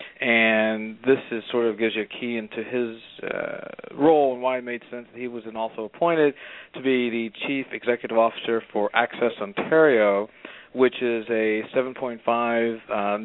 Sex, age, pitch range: male, 40-59, 110-125 Hz